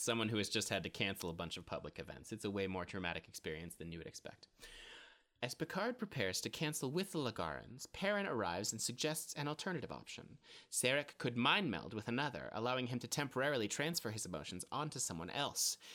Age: 30-49